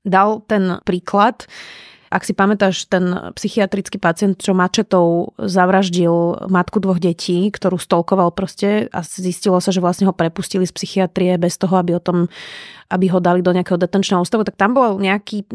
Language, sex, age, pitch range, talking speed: Slovak, female, 30-49, 180-200 Hz, 165 wpm